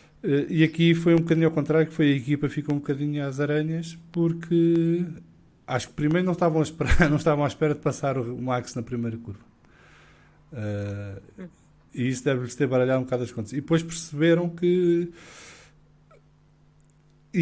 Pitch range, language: 125-165 Hz, English